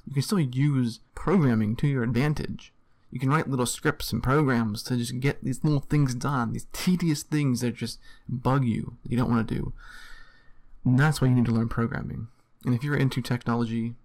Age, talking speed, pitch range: 20-39, 200 wpm, 120-135 Hz